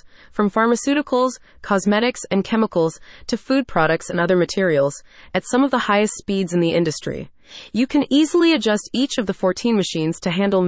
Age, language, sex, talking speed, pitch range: 30-49, English, female, 175 wpm, 170-230 Hz